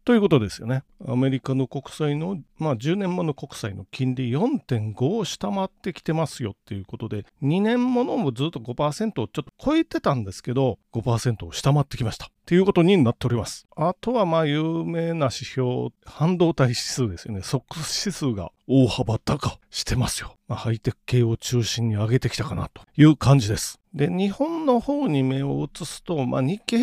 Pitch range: 120-175 Hz